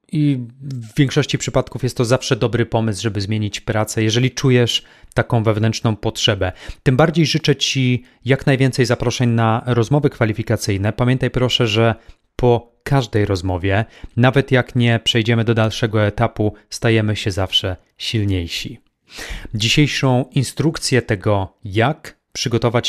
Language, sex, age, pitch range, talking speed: Polish, male, 30-49, 110-130 Hz, 130 wpm